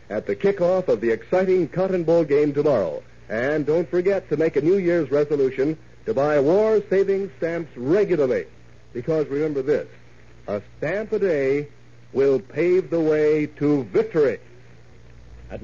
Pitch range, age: 145-210 Hz, 60-79